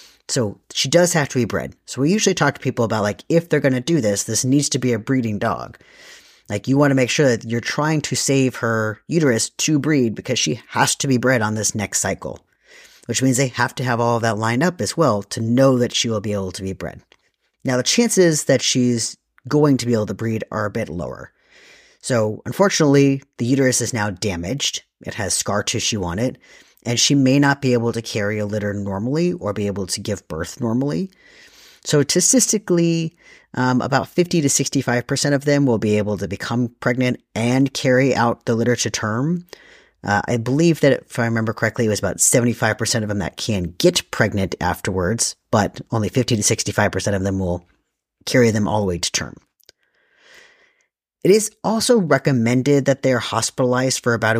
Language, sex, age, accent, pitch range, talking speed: English, male, 30-49, American, 110-140 Hz, 205 wpm